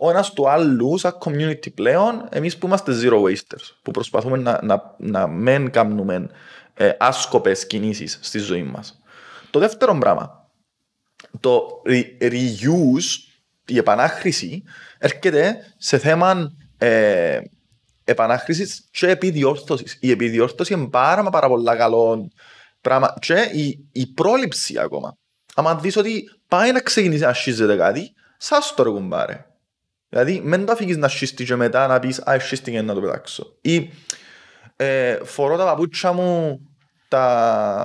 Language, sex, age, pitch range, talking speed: Greek, male, 30-49, 130-195 Hz, 125 wpm